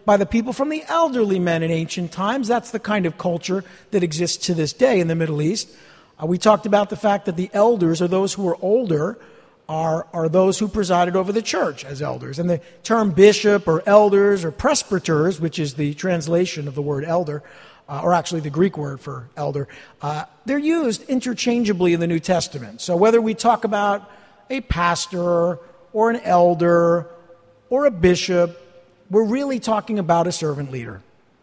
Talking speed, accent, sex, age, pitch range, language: 190 wpm, American, male, 50-69, 170-245 Hz, English